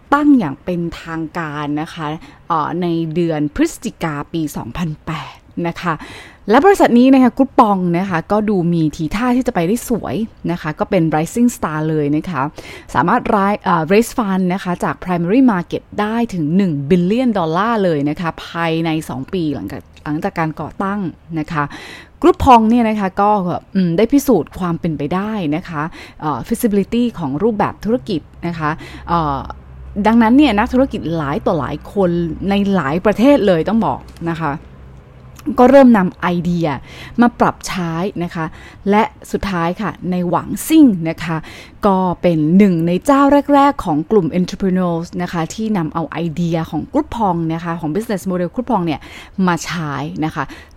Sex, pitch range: female, 160-215 Hz